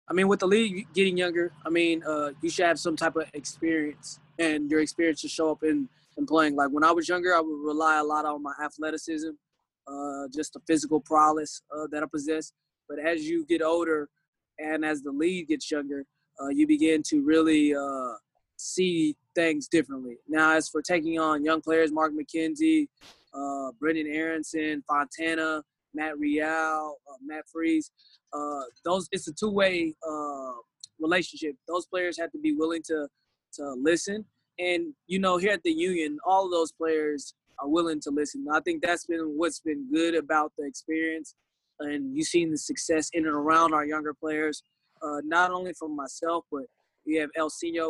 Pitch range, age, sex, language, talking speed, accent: 150-165 Hz, 20-39, male, English, 185 wpm, American